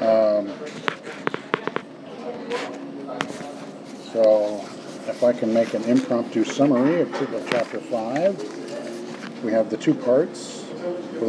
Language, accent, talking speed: English, American, 95 wpm